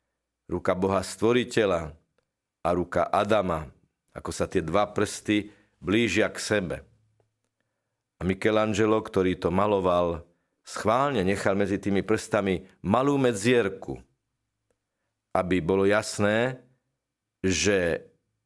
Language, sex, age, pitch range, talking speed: Slovak, male, 50-69, 95-115 Hz, 100 wpm